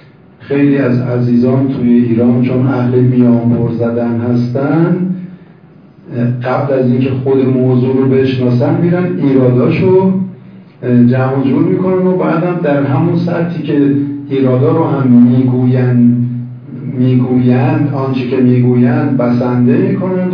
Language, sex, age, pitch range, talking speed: Persian, male, 50-69, 120-145 Hz, 110 wpm